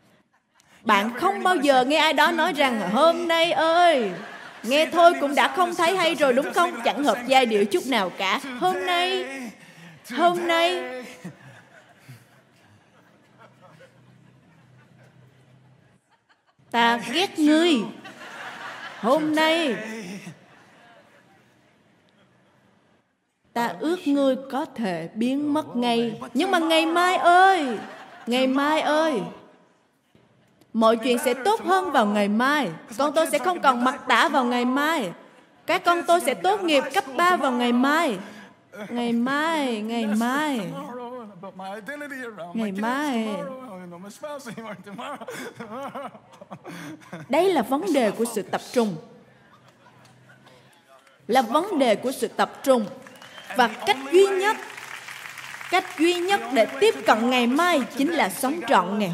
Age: 20-39